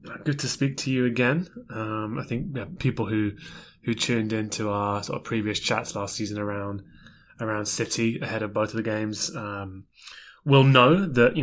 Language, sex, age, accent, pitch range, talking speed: English, male, 20-39, British, 105-125 Hz, 190 wpm